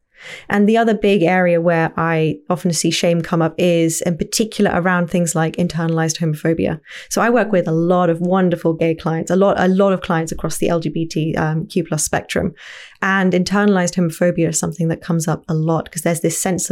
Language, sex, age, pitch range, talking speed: English, female, 20-39, 165-190 Hz, 195 wpm